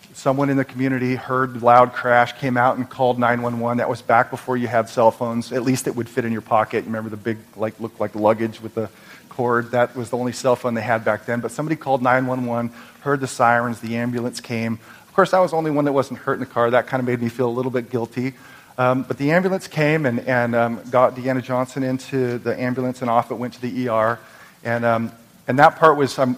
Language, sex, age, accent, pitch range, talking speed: English, male, 40-59, American, 110-130 Hz, 250 wpm